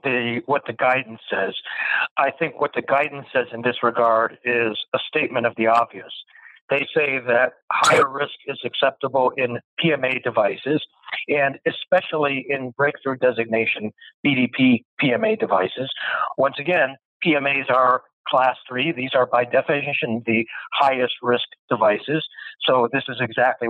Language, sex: English, male